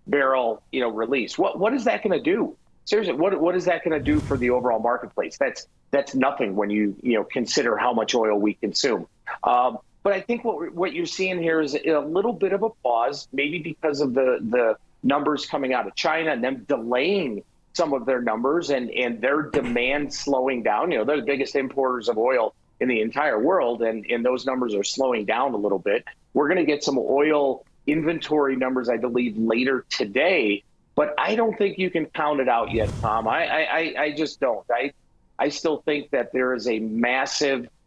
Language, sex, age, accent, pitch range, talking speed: English, male, 40-59, American, 120-155 Hz, 210 wpm